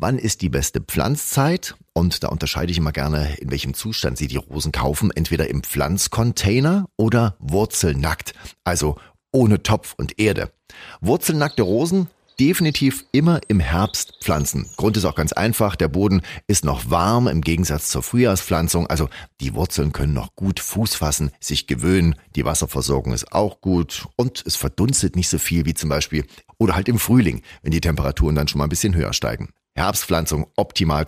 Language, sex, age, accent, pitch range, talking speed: German, male, 40-59, German, 75-105 Hz, 170 wpm